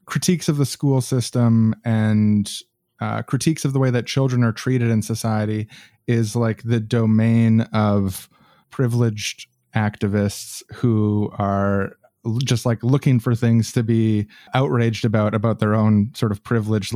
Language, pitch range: English, 105-125 Hz